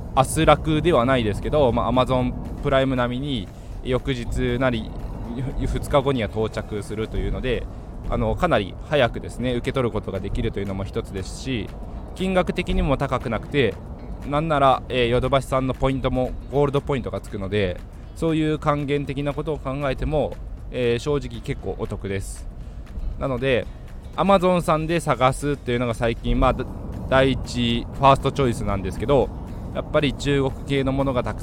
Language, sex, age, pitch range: Japanese, male, 20-39, 110-140 Hz